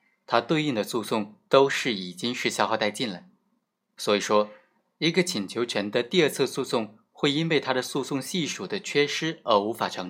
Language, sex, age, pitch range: Chinese, male, 20-39, 110-180 Hz